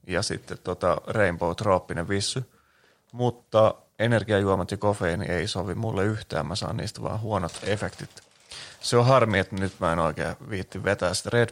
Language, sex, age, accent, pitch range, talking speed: Finnish, male, 30-49, native, 95-115 Hz, 160 wpm